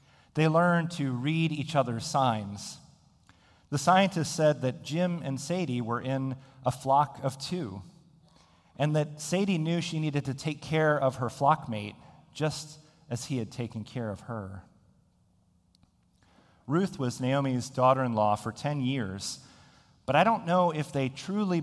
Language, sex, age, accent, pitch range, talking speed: English, male, 40-59, American, 120-155 Hz, 150 wpm